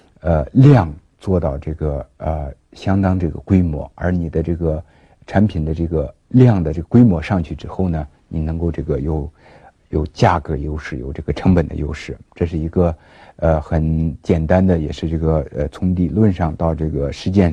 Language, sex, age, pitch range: Chinese, male, 50-69, 80-90 Hz